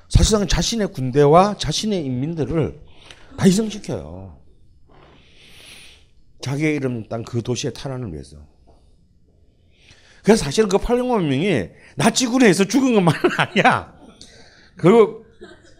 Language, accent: Korean, native